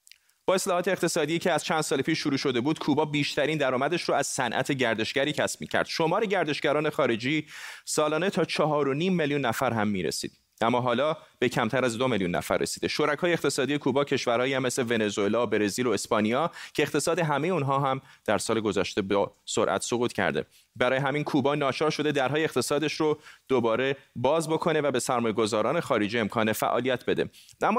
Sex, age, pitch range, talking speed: male, 30-49, 125-155 Hz, 180 wpm